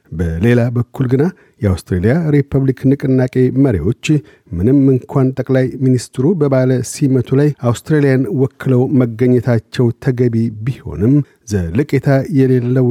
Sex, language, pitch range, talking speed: male, Amharic, 115-135 Hz, 105 wpm